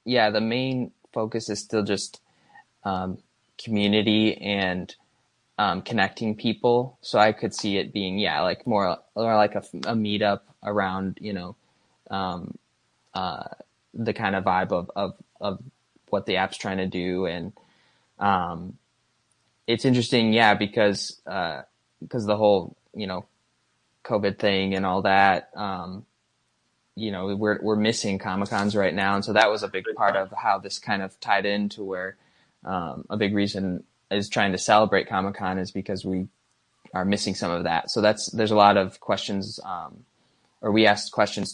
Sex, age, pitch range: male, 20-39, 95-110 Hz